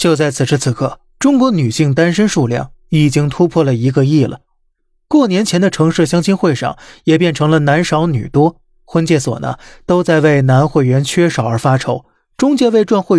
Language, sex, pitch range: Chinese, male, 135-175 Hz